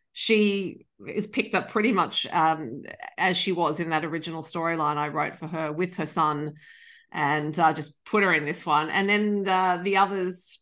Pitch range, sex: 160-195 Hz, female